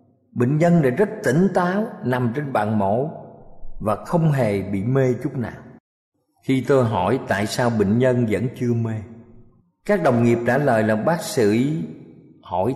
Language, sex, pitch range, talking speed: Vietnamese, male, 110-150 Hz, 170 wpm